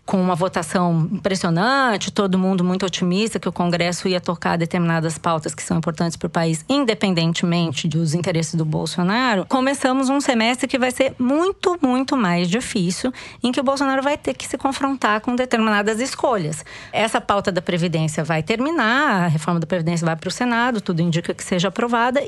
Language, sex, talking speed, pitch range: Portuguese, female, 180 wpm, 175-245 Hz